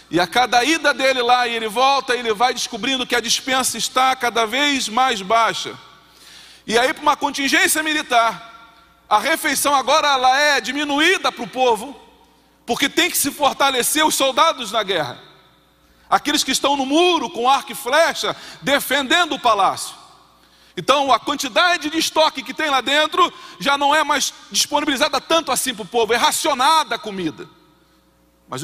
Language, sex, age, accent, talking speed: Portuguese, male, 40-59, Brazilian, 170 wpm